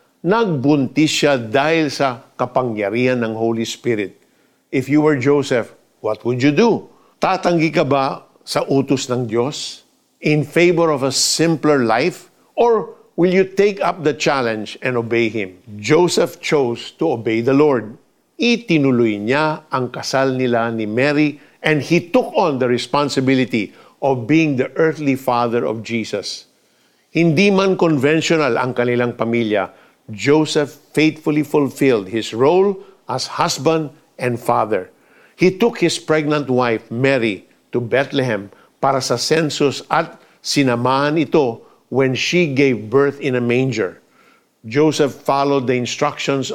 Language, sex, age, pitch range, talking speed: Filipino, male, 50-69, 125-160 Hz, 135 wpm